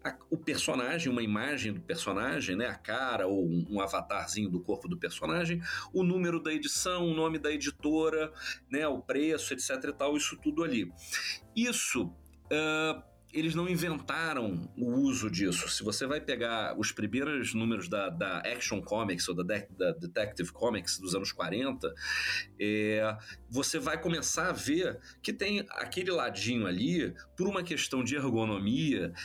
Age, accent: 40-59, Brazilian